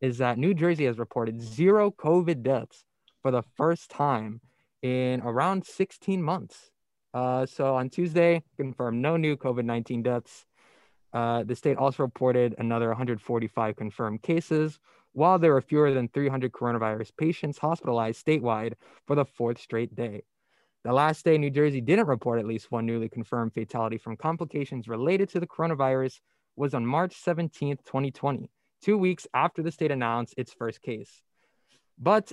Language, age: English, 20-39